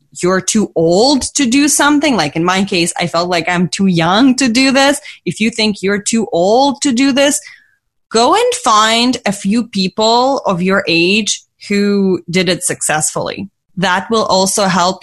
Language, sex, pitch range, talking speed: English, female, 170-205 Hz, 180 wpm